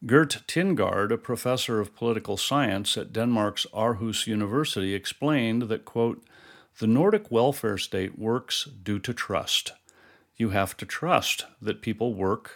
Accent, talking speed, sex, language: American, 140 wpm, male, English